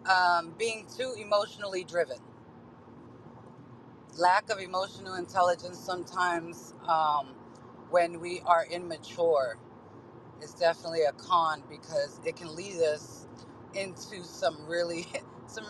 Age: 30-49